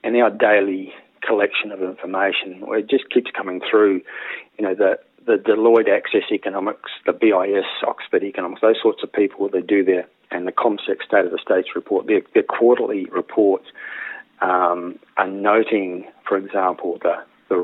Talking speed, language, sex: 165 wpm, English, male